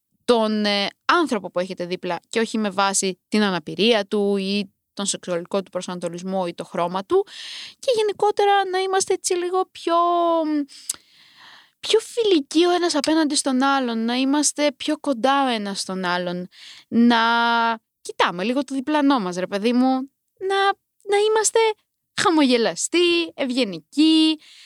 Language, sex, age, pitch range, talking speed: Greek, female, 20-39, 200-305 Hz, 140 wpm